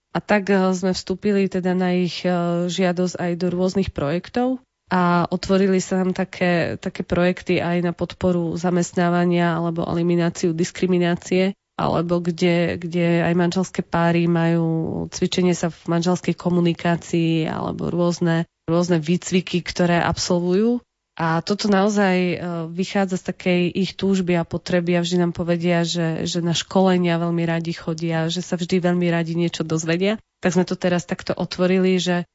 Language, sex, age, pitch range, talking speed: Slovak, female, 20-39, 170-190 Hz, 145 wpm